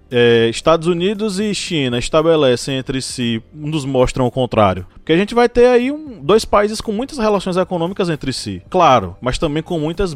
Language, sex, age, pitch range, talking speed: Portuguese, male, 20-39, 130-185 Hz, 175 wpm